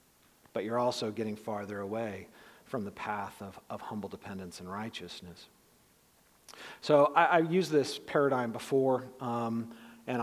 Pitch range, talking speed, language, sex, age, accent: 115-145 Hz, 140 wpm, English, male, 40-59, American